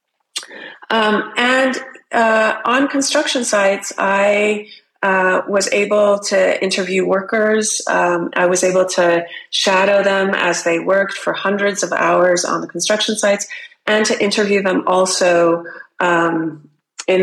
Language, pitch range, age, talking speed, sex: English, 180-215 Hz, 30-49, 130 wpm, female